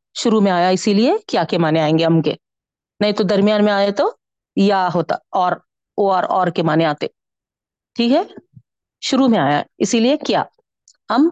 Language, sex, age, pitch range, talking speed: Urdu, female, 40-59, 195-260 Hz, 185 wpm